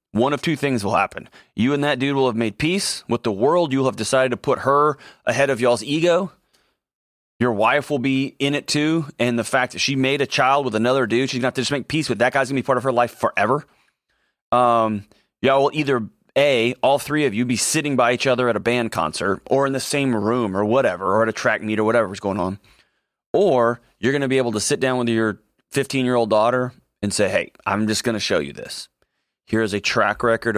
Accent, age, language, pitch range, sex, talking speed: American, 30-49, English, 105-135 Hz, male, 245 wpm